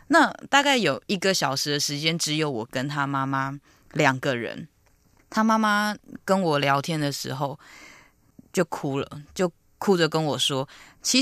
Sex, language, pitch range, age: female, Chinese, 140-190 Hz, 20-39